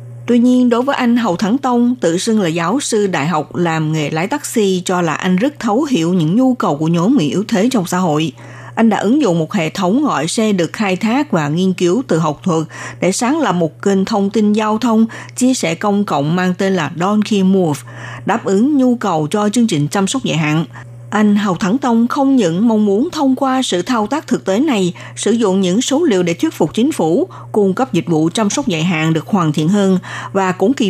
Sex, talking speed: female, 240 wpm